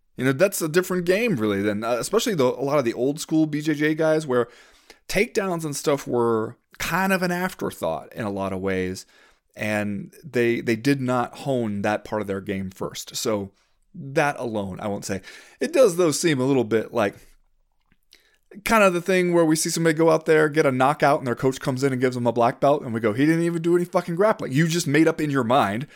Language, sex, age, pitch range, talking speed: English, male, 30-49, 110-155 Hz, 235 wpm